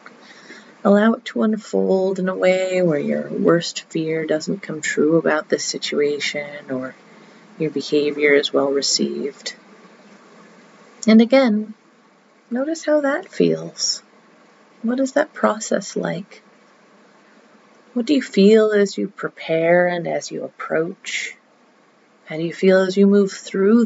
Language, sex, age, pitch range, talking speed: English, female, 30-49, 170-225 Hz, 135 wpm